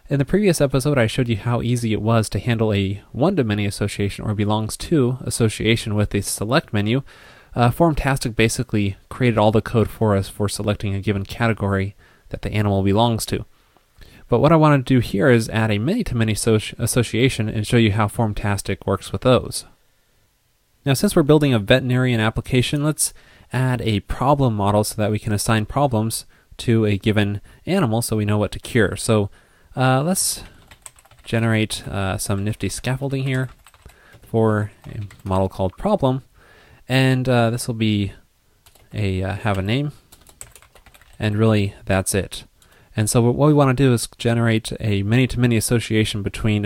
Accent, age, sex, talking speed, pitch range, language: American, 20-39, male, 170 wpm, 100-125 Hz, English